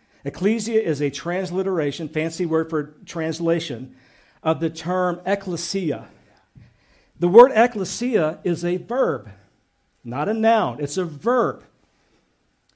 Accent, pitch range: American, 155-200 Hz